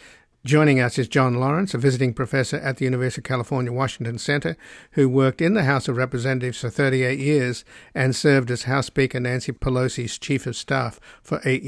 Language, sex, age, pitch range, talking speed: English, male, 60-79, 125-140 Hz, 190 wpm